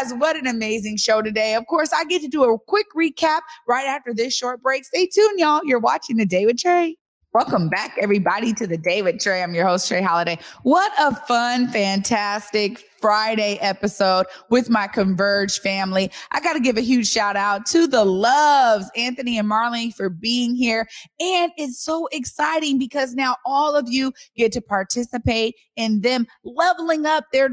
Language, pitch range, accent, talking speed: English, 205-265 Hz, American, 185 wpm